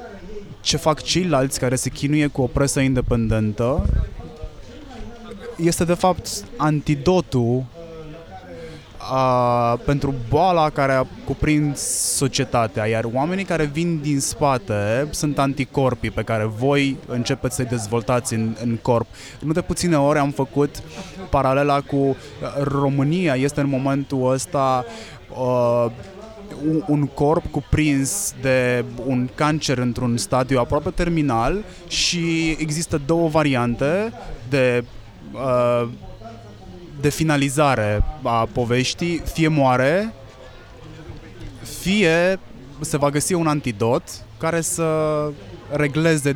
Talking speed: 105 wpm